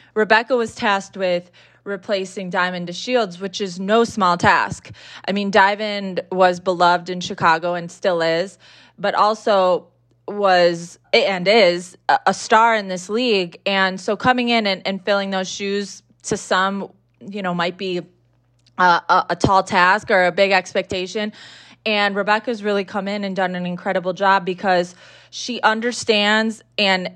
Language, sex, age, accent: English, female, 20-39, American